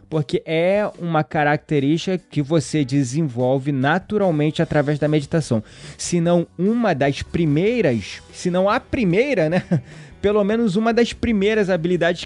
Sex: male